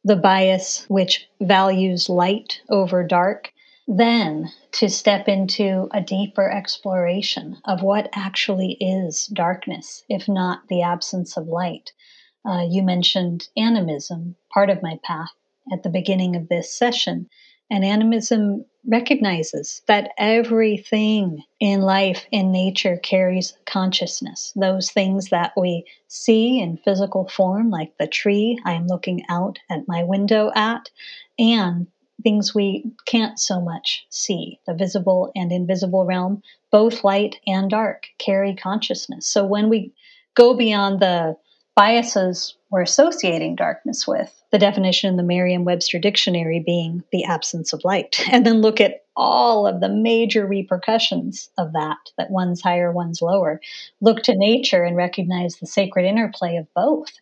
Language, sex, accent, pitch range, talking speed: English, female, American, 180-215 Hz, 140 wpm